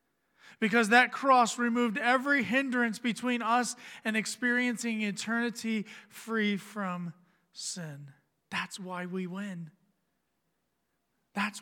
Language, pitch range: English, 180-240 Hz